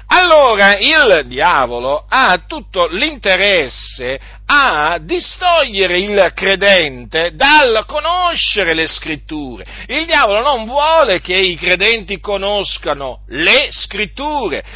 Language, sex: Italian, male